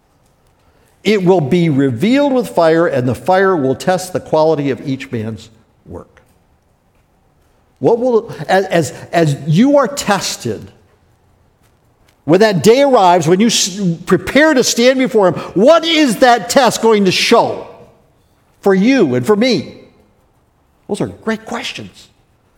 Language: English